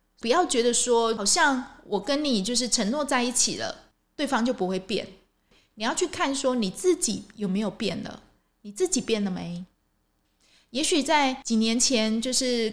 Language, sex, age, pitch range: Chinese, female, 20-39, 200-265 Hz